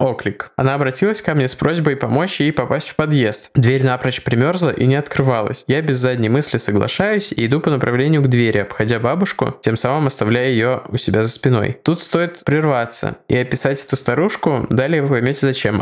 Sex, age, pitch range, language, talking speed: male, 20-39, 115-140 Hz, Russian, 190 wpm